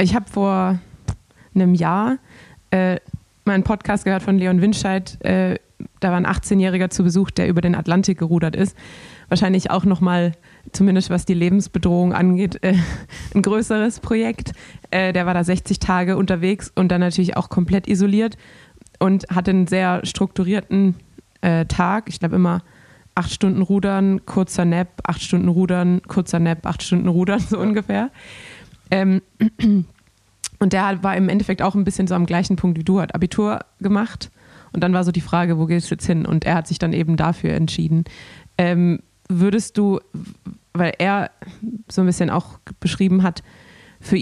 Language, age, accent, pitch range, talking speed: German, 20-39, German, 175-195 Hz, 170 wpm